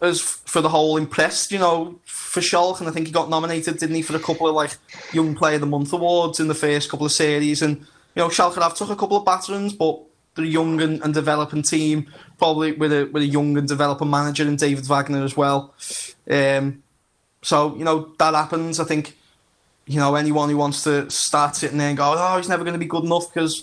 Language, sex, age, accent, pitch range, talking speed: English, male, 20-39, British, 145-160 Hz, 235 wpm